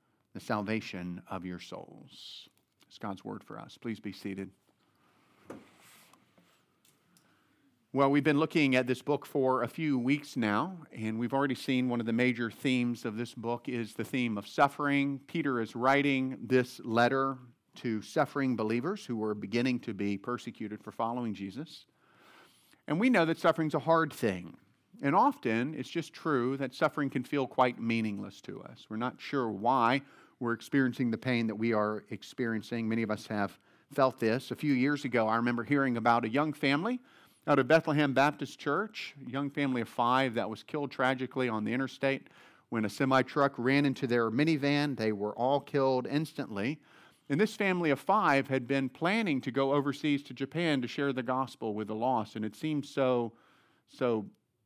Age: 50-69